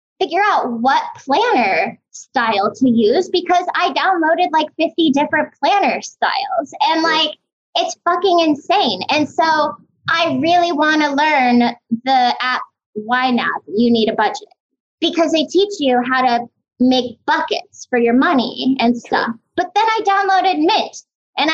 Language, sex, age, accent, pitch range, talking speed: English, female, 20-39, American, 255-350 Hz, 150 wpm